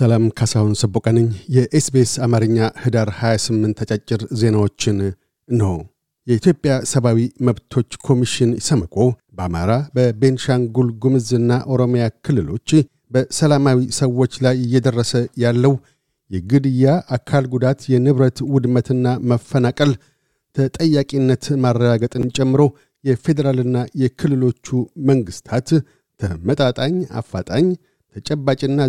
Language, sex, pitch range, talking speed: Amharic, male, 120-140 Hz, 80 wpm